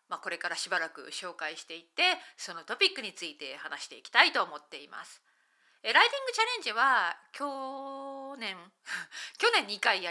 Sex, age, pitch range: female, 40-59, 215-340 Hz